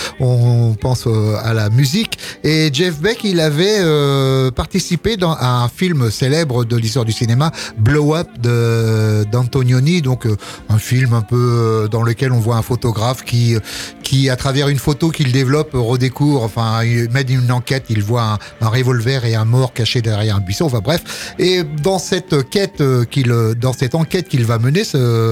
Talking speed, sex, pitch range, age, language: 180 wpm, male, 120-155 Hz, 30-49, French